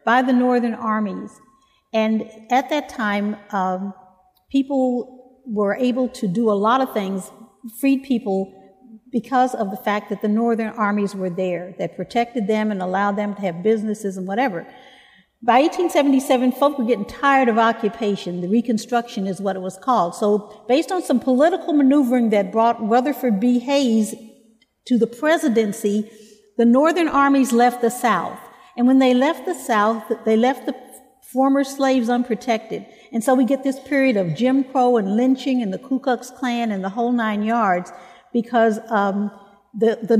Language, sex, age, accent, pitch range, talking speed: English, female, 50-69, American, 210-260 Hz, 170 wpm